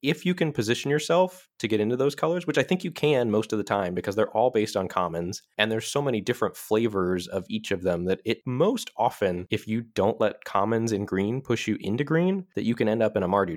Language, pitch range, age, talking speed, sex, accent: English, 100-145 Hz, 20-39, 255 wpm, male, American